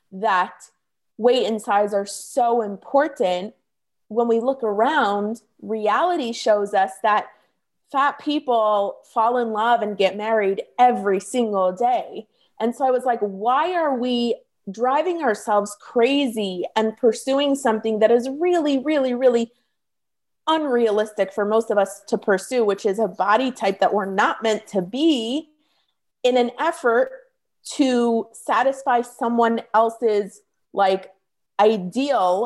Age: 30-49